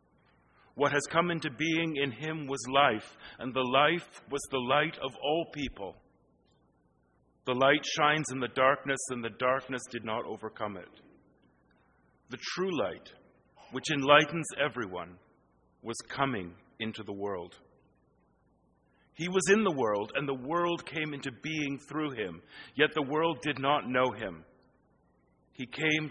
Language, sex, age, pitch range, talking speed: English, male, 40-59, 110-150 Hz, 145 wpm